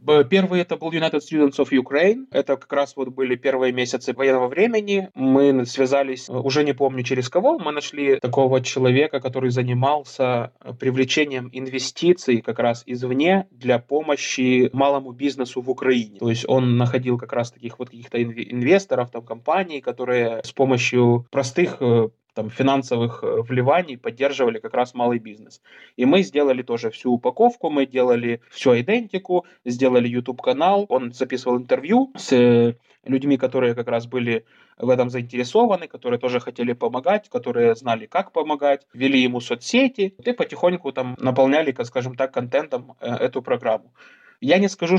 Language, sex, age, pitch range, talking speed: Ukrainian, male, 20-39, 125-145 Hz, 150 wpm